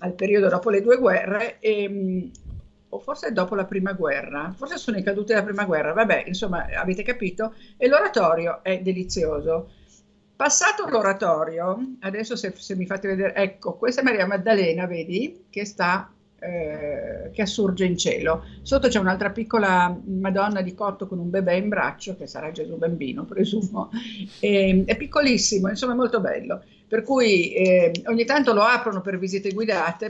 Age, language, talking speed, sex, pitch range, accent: 50-69, Italian, 160 wpm, female, 185-230 Hz, native